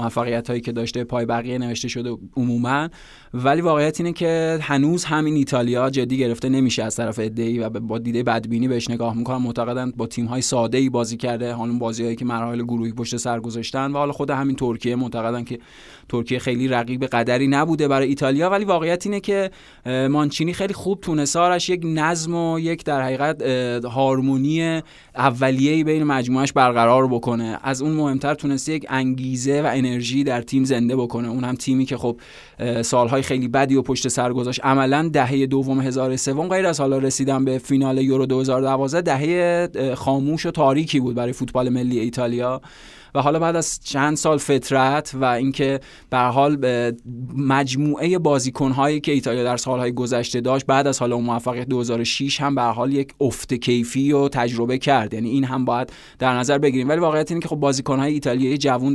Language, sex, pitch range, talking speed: Persian, male, 120-140 Hz, 180 wpm